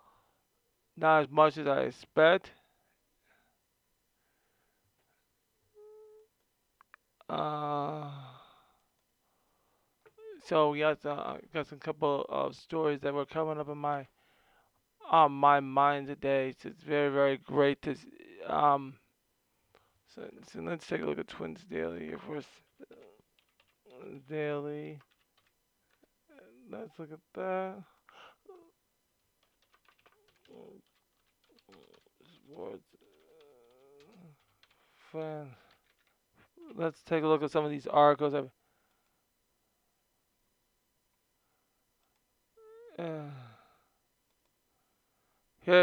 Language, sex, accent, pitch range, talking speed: English, male, American, 145-165 Hz, 80 wpm